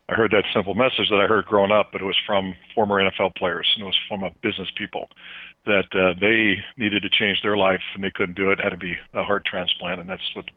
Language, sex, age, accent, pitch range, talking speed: English, male, 50-69, American, 95-105 Hz, 275 wpm